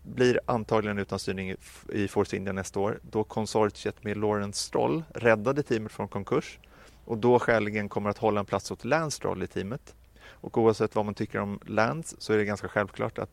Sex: male